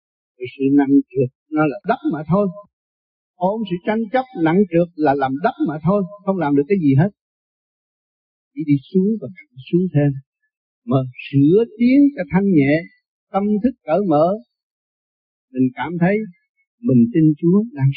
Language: Vietnamese